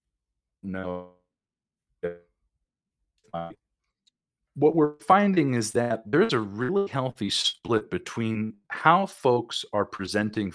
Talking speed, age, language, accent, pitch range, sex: 100 wpm, 40-59, English, American, 100-150 Hz, male